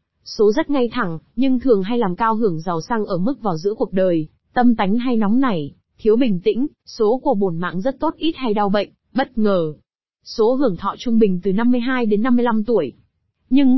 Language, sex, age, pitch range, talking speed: Vietnamese, female, 20-39, 195-245 Hz, 215 wpm